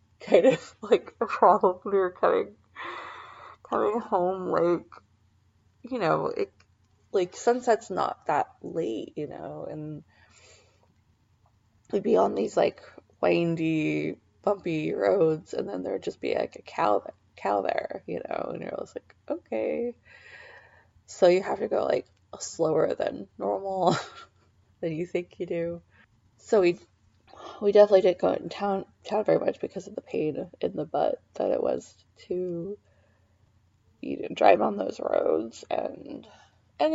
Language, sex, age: English, female, 20-39